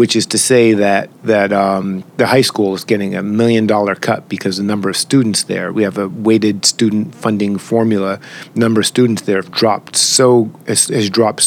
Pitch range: 100-125 Hz